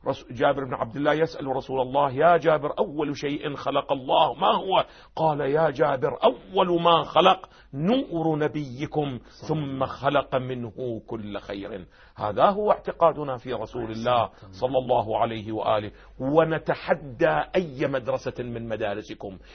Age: 40-59